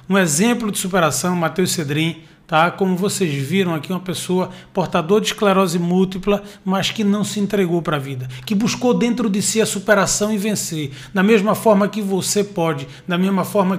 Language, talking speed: Portuguese, 185 wpm